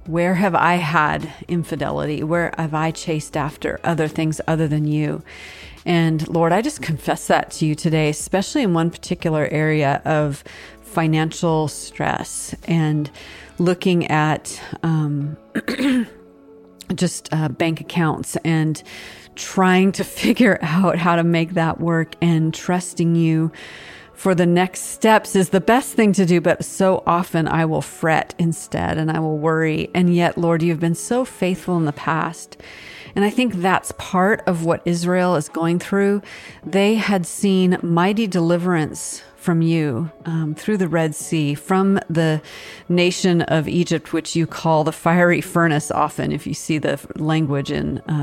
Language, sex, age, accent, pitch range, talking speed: English, female, 40-59, American, 155-180 Hz, 155 wpm